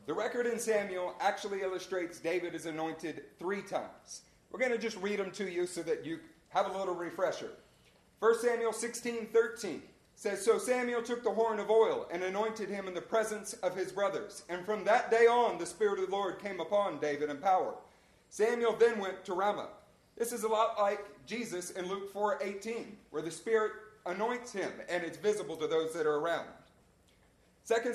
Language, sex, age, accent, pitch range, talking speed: English, male, 40-59, American, 190-235 Hz, 195 wpm